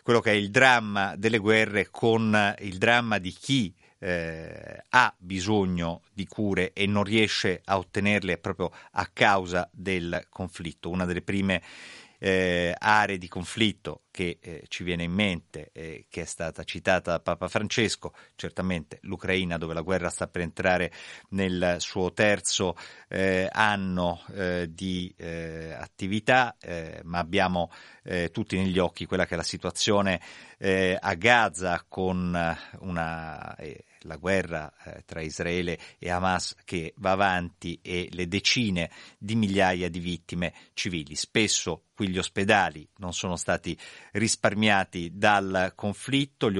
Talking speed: 145 wpm